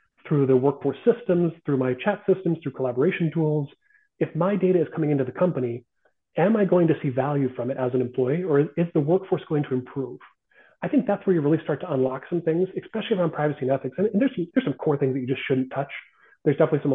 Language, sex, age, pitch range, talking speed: English, male, 30-49, 140-190 Hz, 235 wpm